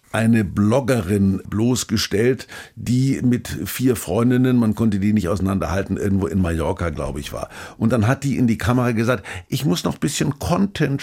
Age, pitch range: 50-69, 105-130 Hz